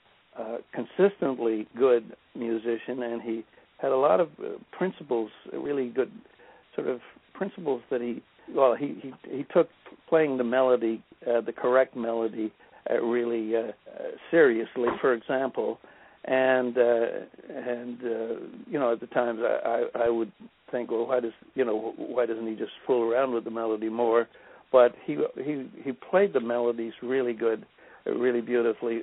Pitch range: 115-130 Hz